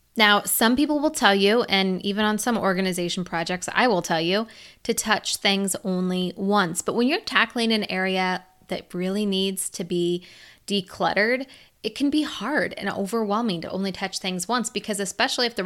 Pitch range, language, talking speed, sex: 185-230 Hz, English, 185 wpm, female